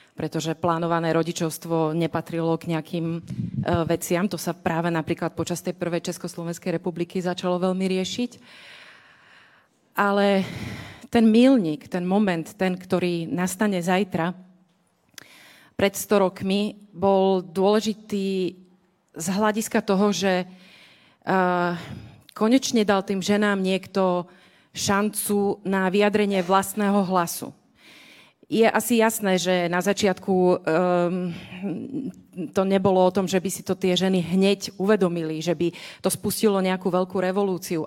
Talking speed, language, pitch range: 120 wpm, Slovak, 175-200 Hz